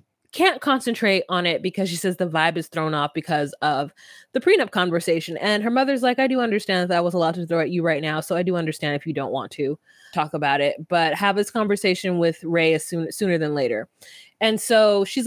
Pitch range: 170-245 Hz